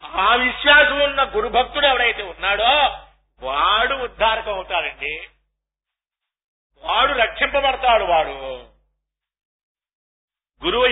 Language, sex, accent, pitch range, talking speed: Telugu, male, native, 230-275 Hz, 70 wpm